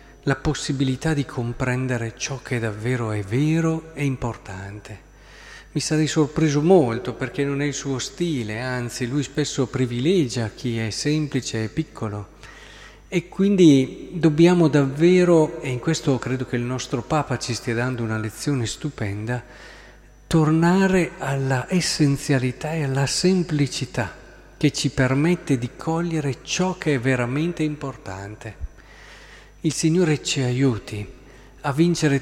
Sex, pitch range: male, 120-155 Hz